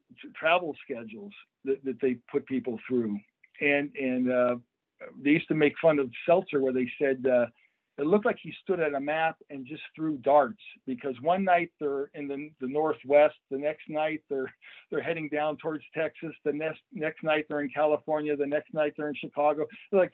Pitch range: 140-180 Hz